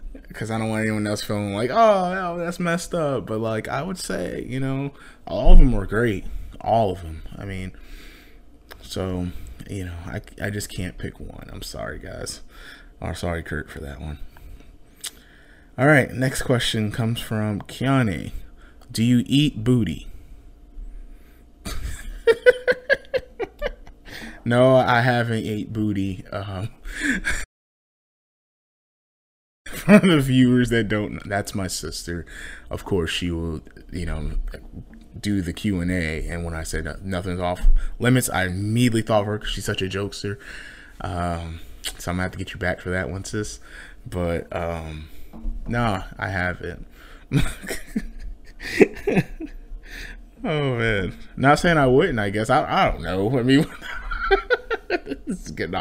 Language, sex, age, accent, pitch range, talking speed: English, male, 20-39, American, 85-130 Hz, 145 wpm